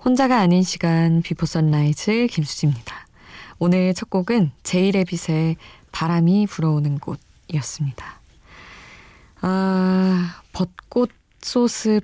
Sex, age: female, 20-39